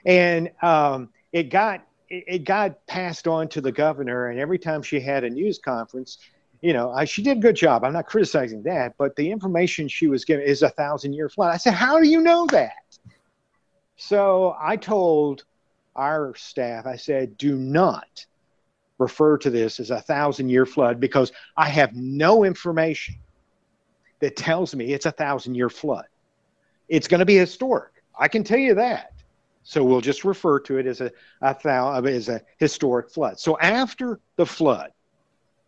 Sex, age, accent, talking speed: male, 50-69, American, 175 wpm